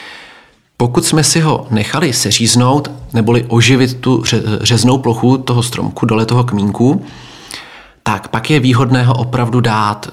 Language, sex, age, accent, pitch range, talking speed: Czech, male, 40-59, native, 110-125 Hz, 135 wpm